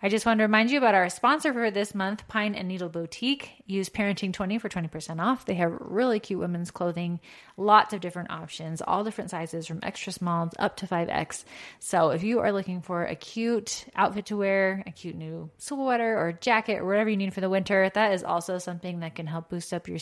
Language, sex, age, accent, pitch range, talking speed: English, female, 20-39, American, 175-210 Hz, 220 wpm